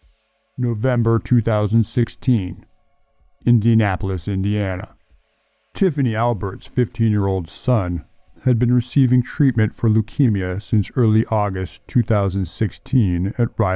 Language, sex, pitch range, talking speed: English, male, 95-120 Hz, 85 wpm